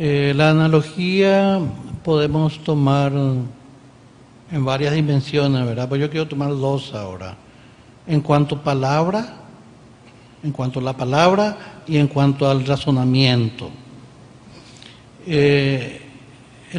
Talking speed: 105 wpm